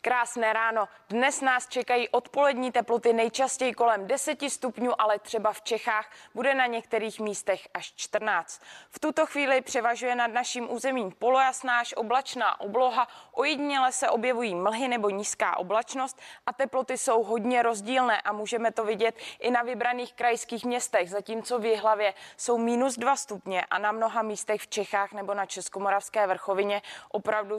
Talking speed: 150 wpm